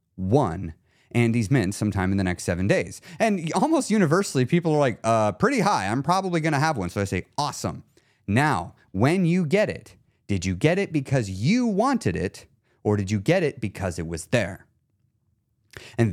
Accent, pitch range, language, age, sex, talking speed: American, 105-145 Hz, English, 30-49, male, 195 wpm